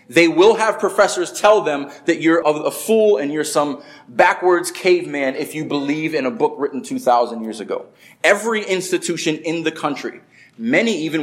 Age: 20-39